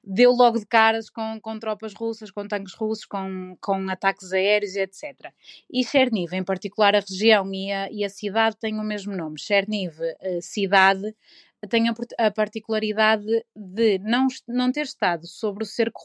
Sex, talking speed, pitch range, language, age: female, 165 wpm, 195-235 Hz, Portuguese, 20-39